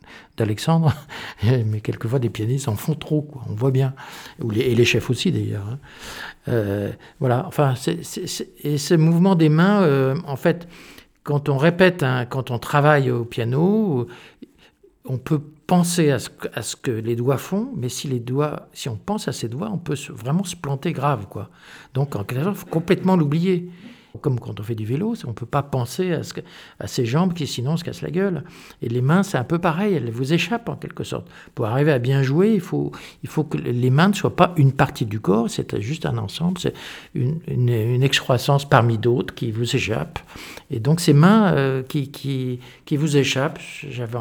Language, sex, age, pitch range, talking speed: French, male, 60-79, 125-165 Hz, 215 wpm